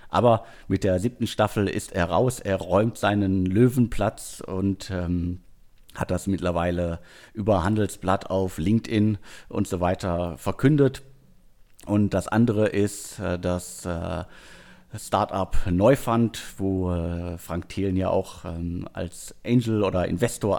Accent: German